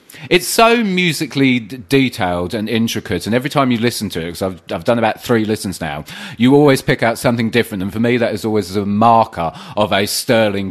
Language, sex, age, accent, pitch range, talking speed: English, male, 30-49, British, 95-125 Hz, 215 wpm